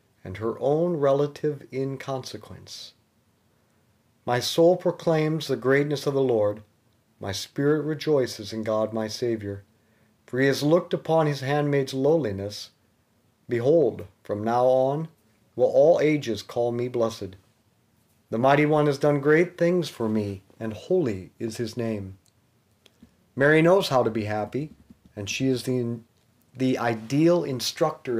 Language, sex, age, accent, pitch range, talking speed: English, male, 40-59, American, 110-145 Hz, 140 wpm